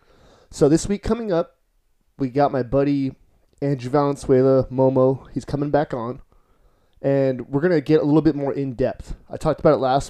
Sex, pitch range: male, 120-145 Hz